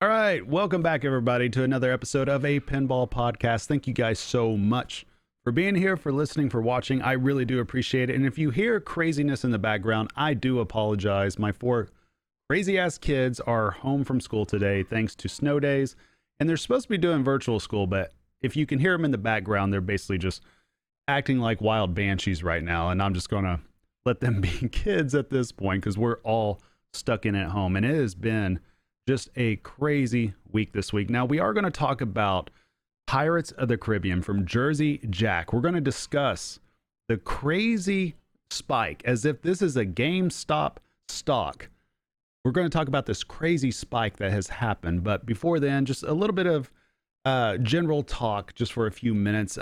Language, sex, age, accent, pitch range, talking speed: English, male, 30-49, American, 105-140 Hz, 195 wpm